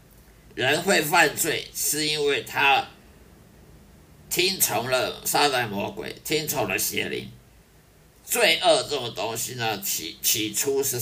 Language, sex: Chinese, male